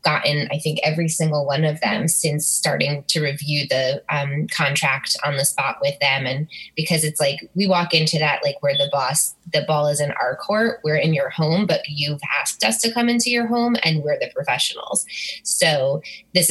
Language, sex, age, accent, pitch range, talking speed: English, female, 20-39, American, 150-175 Hz, 205 wpm